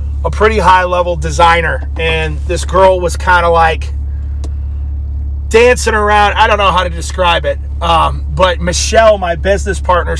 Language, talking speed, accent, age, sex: English, 160 wpm, American, 30-49, male